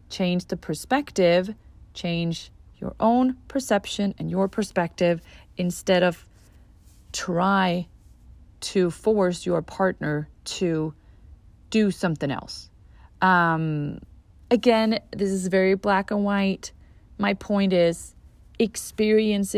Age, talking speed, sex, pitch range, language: 30-49, 100 wpm, female, 155-200 Hz, English